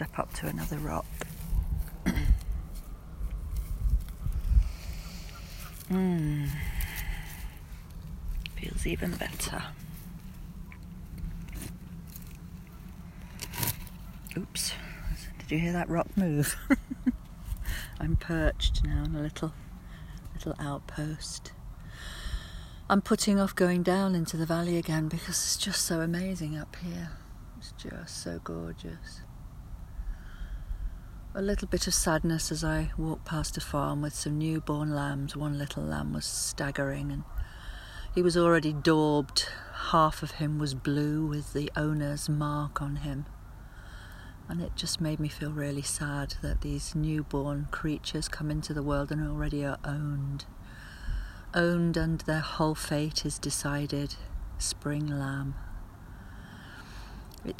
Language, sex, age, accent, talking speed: English, female, 40-59, British, 115 wpm